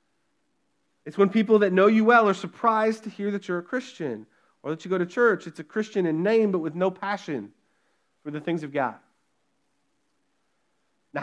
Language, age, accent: English, 30-49, American